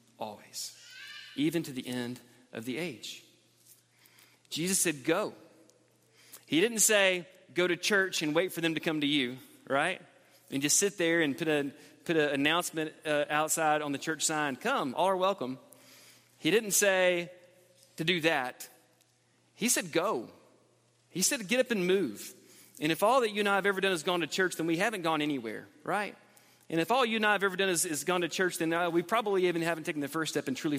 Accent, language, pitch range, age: American, English, 150-190 Hz, 30-49